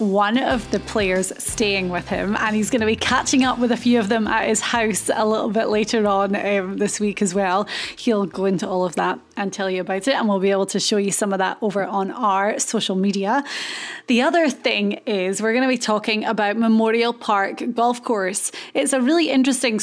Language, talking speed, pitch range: English, 230 wpm, 200-245 Hz